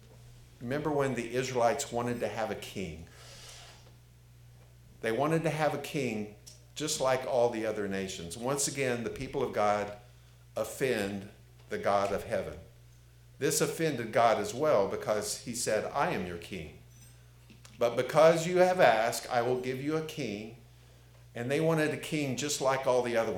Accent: American